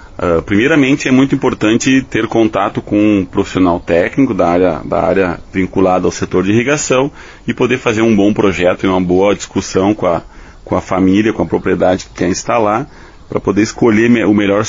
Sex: male